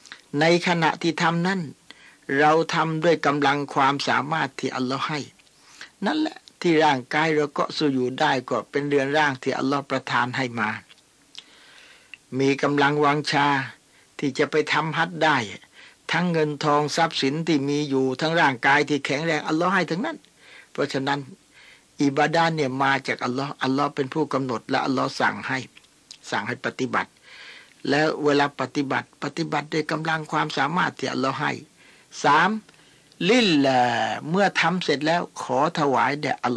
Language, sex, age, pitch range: Thai, male, 60-79, 135-155 Hz